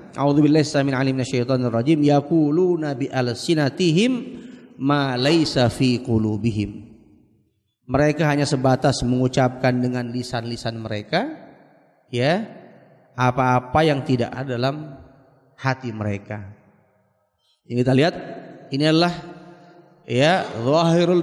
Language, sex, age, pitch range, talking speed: Indonesian, male, 30-49, 125-170 Hz, 95 wpm